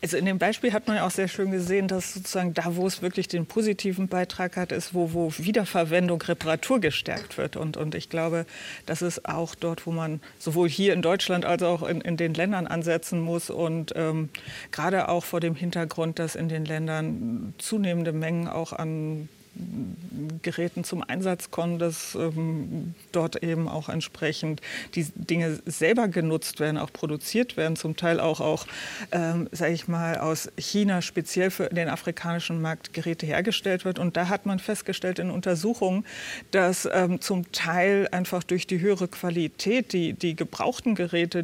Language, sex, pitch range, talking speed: German, female, 165-185 Hz, 175 wpm